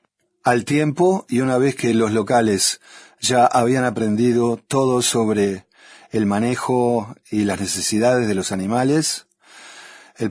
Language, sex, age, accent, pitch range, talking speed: Spanish, male, 50-69, Argentinian, 110-135 Hz, 130 wpm